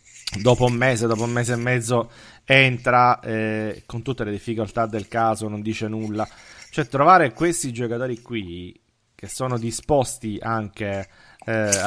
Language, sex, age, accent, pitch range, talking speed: Italian, male, 30-49, native, 105-125 Hz, 145 wpm